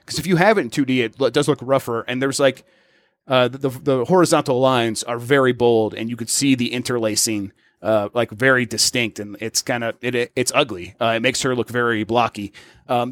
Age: 30-49